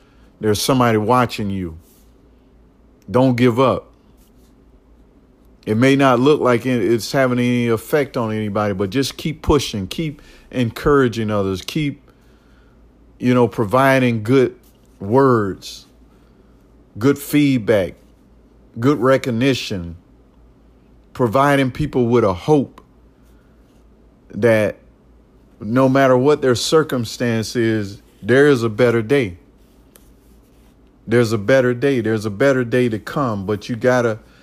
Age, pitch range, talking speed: 50-69, 105-130 Hz, 115 wpm